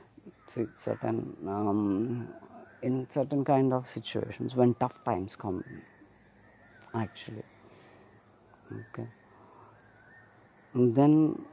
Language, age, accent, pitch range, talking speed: English, 50-69, Indian, 100-120 Hz, 85 wpm